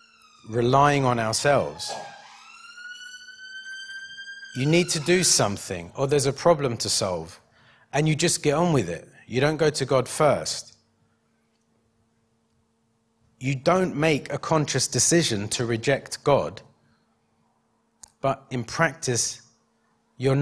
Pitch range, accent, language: 115-155 Hz, British, English